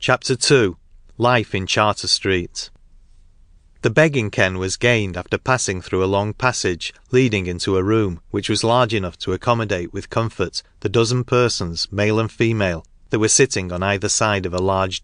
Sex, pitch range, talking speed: male, 90-115 Hz, 170 wpm